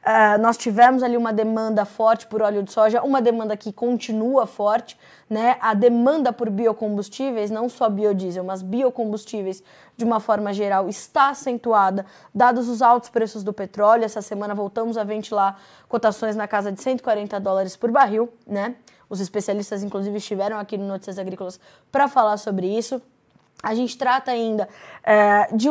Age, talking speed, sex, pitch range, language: 20-39, 160 wpm, female, 210-250 Hz, Portuguese